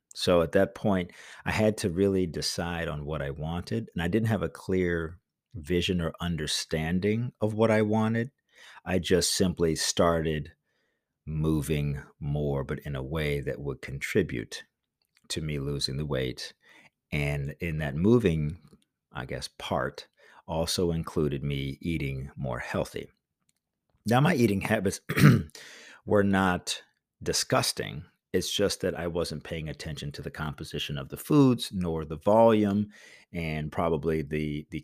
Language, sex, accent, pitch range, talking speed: English, male, American, 75-95 Hz, 145 wpm